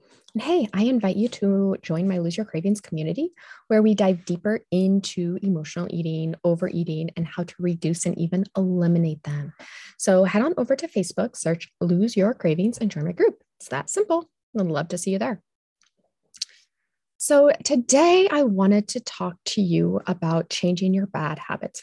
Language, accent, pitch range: English, American, 170-225 Hz